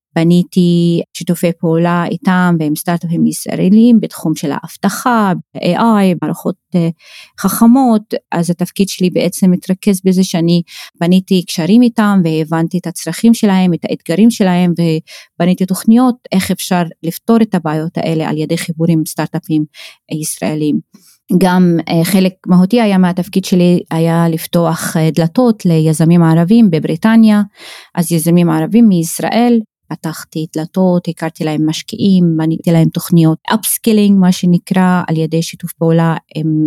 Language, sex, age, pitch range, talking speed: Hebrew, female, 20-39, 165-195 Hz, 125 wpm